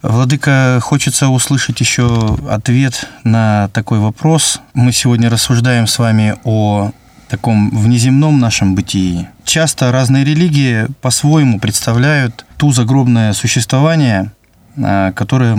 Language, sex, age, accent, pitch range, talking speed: Russian, male, 20-39, native, 105-135 Hz, 105 wpm